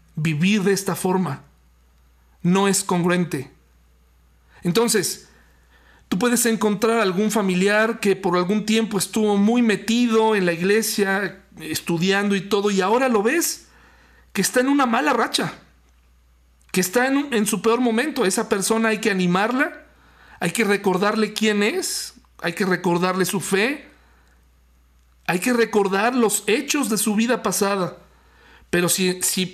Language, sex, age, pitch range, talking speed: Spanish, male, 50-69, 170-225 Hz, 140 wpm